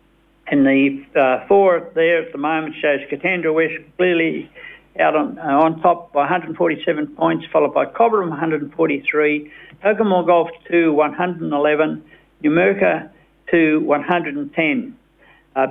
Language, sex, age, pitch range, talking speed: English, male, 60-79, 140-175 Hz, 120 wpm